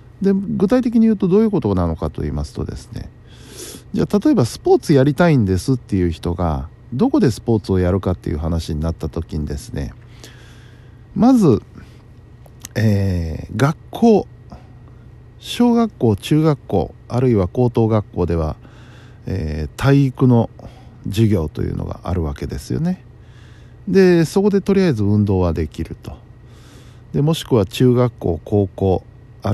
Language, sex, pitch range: Japanese, male, 95-125 Hz